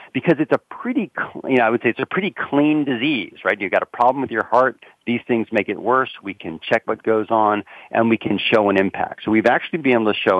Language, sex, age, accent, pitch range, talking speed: English, male, 40-59, American, 105-140 Hz, 270 wpm